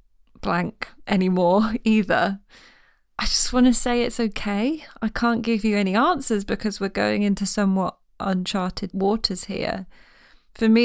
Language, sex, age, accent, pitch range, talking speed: English, female, 20-39, British, 190-230 Hz, 145 wpm